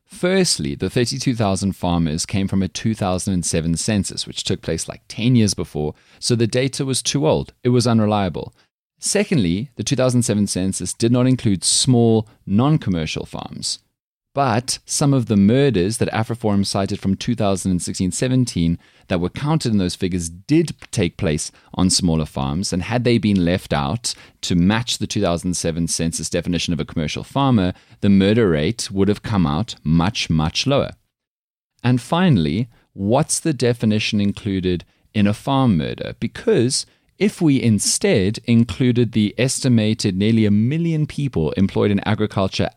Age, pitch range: 30-49, 85-120 Hz